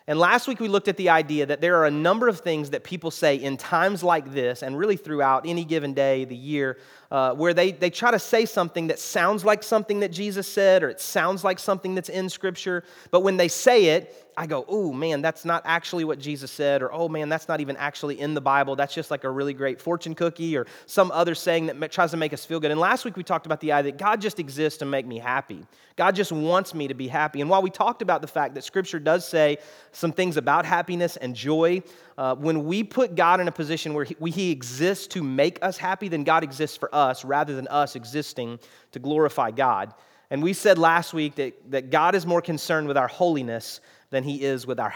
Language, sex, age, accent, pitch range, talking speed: English, male, 30-49, American, 145-185 Hz, 245 wpm